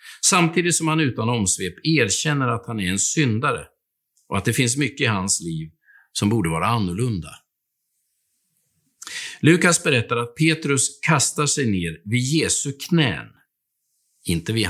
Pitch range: 105-160 Hz